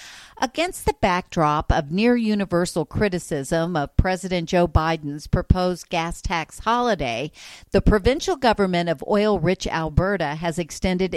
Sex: female